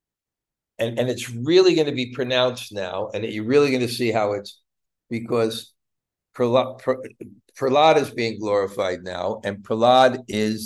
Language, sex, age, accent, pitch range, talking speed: English, male, 50-69, American, 105-130 Hz, 145 wpm